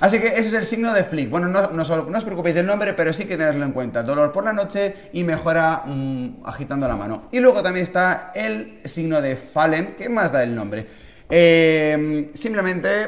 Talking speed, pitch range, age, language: 215 wpm, 145-190 Hz, 30-49, Spanish